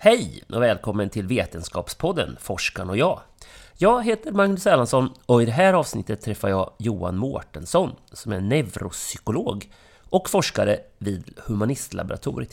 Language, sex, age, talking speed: English, male, 30-49, 135 wpm